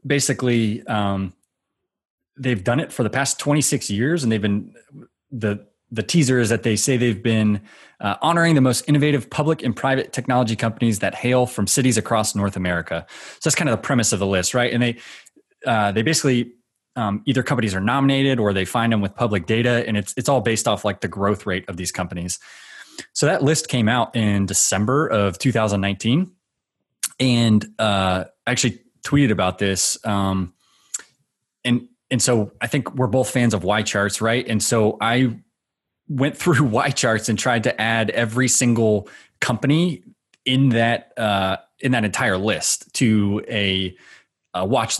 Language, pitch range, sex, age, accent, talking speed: English, 105-130 Hz, male, 20-39, American, 175 wpm